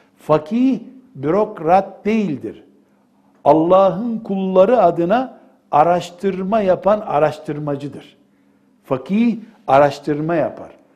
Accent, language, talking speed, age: native, Turkish, 65 wpm, 60-79